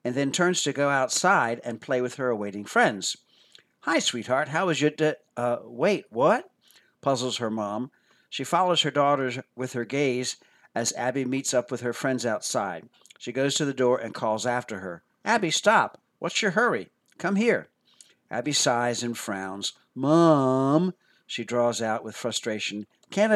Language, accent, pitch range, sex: English, American, 110-145 Hz, male